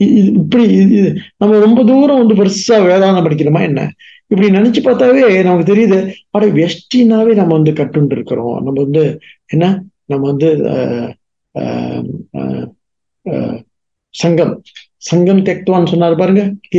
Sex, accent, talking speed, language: male, Indian, 95 wpm, English